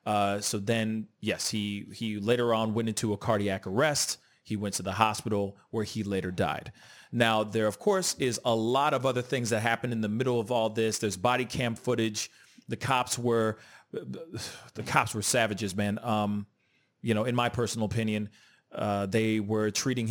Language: English